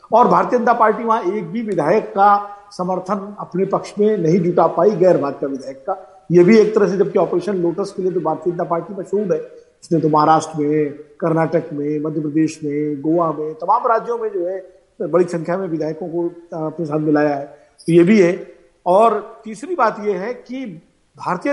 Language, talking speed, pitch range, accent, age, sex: Hindi, 205 wpm, 175-225 Hz, native, 50-69, male